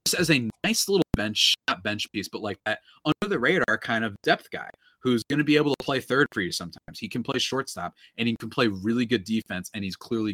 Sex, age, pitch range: male, 30-49, 100-140 Hz